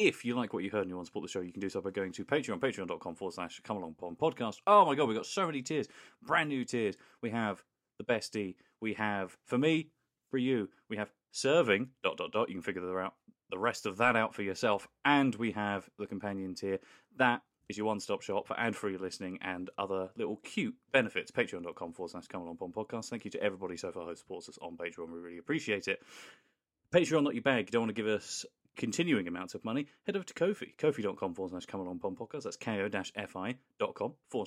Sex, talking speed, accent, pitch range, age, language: male, 245 wpm, British, 95-130 Hz, 30-49, English